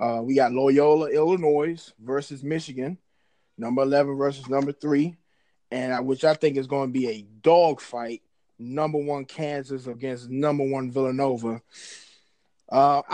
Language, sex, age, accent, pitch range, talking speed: English, male, 20-39, American, 125-150 Hz, 145 wpm